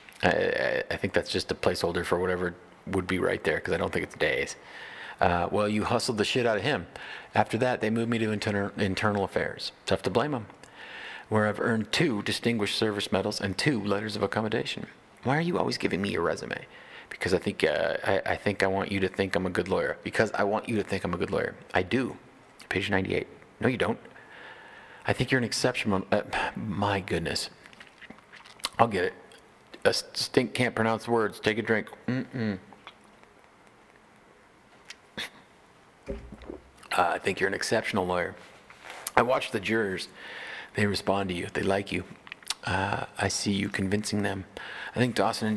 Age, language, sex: 40-59, English, male